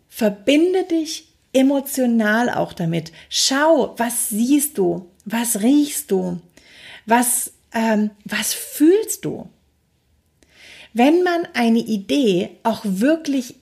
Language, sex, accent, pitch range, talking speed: German, female, German, 205-265 Hz, 100 wpm